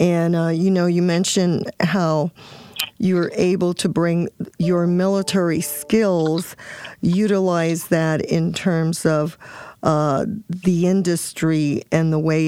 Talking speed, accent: 120 wpm, American